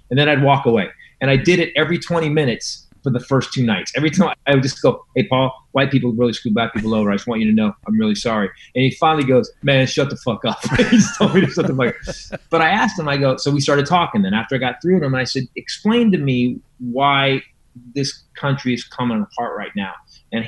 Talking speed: 240 wpm